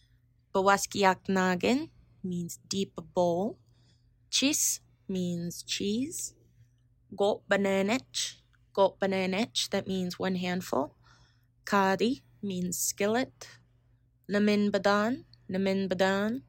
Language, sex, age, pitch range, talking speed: English, female, 20-39, 175-205 Hz, 75 wpm